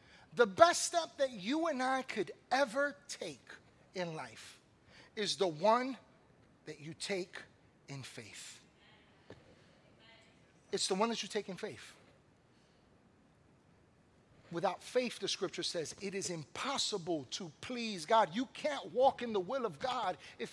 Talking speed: 140 wpm